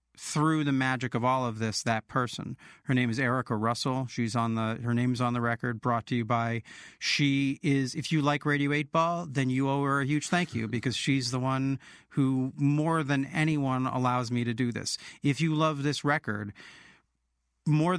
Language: English